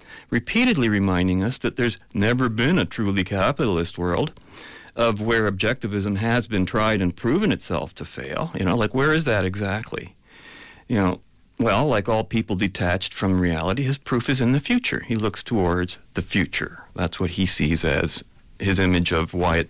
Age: 40-59